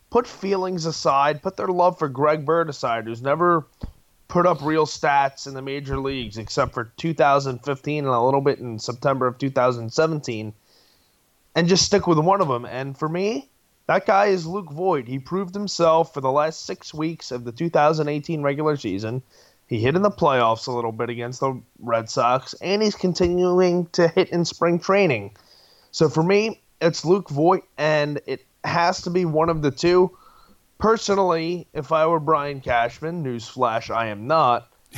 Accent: American